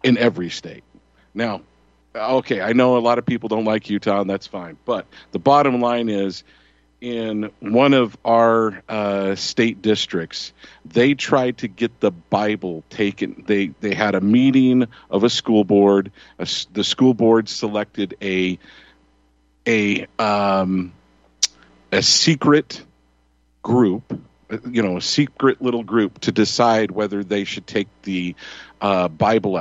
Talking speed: 145 wpm